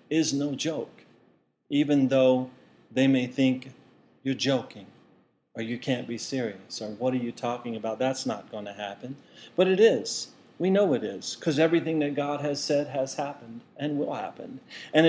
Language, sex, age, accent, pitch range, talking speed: English, male, 40-59, American, 125-155 Hz, 175 wpm